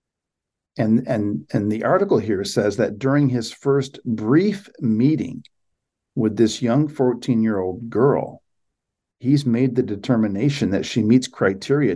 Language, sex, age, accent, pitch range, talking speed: English, male, 50-69, American, 115-160 Hz, 130 wpm